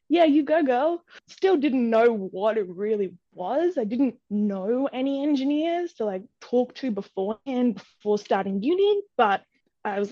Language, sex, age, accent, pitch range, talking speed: English, female, 10-29, Australian, 210-280 Hz, 160 wpm